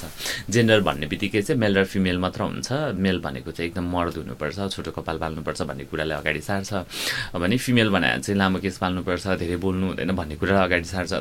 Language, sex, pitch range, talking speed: English, male, 85-115 Hz, 160 wpm